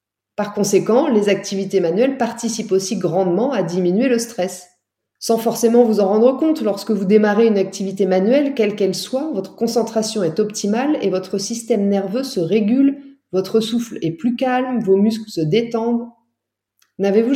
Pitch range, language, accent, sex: 190-245 Hz, French, French, female